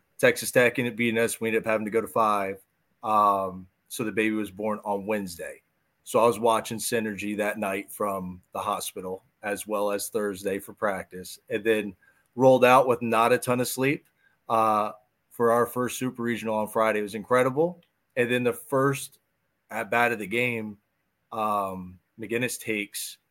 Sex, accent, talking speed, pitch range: male, American, 180 wpm, 105-125 Hz